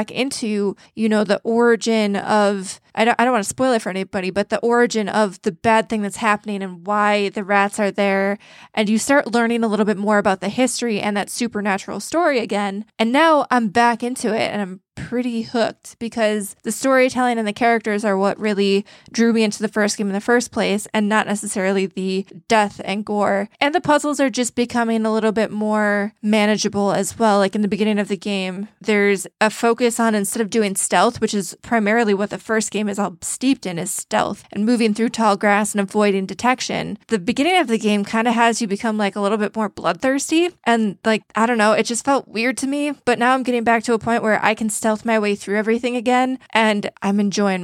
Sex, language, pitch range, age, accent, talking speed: female, English, 200-230 Hz, 20-39, American, 225 wpm